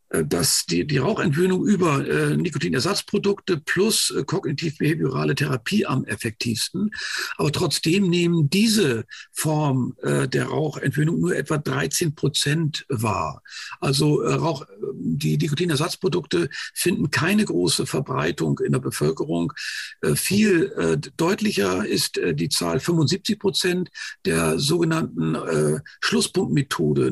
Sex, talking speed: male, 115 wpm